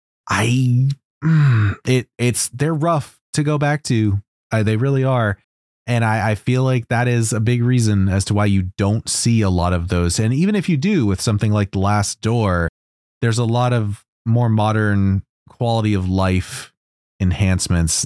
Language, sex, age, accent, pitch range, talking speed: English, male, 30-49, American, 90-120 Hz, 180 wpm